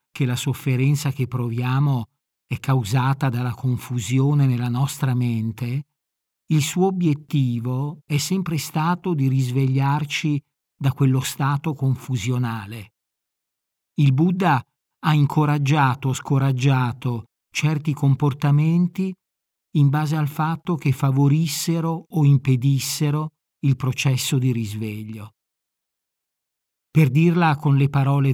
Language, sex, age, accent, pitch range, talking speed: Italian, male, 50-69, native, 125-150 Hz, 105 wpm